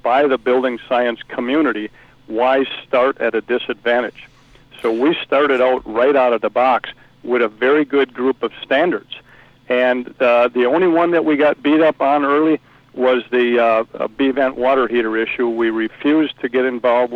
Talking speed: 180 wpm